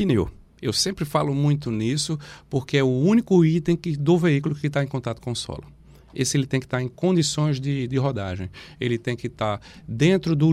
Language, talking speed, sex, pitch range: Portuguese, 205 wpm, male, 120-155 Hz